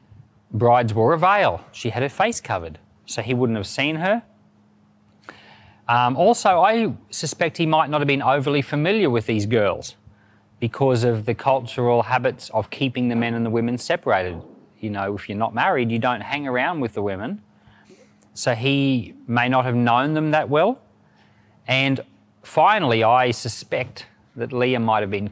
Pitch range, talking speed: 110-140 Hz, 175 wpm